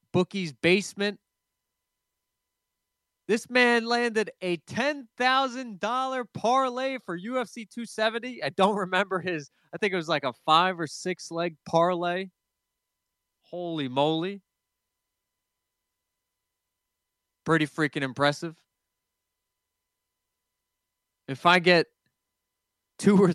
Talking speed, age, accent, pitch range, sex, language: 95 wpm, 20-39, American, 115-180 Hz, male, English